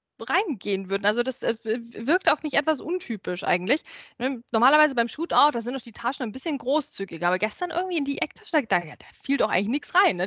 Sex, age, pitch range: female, 20-39, 245-310 Hz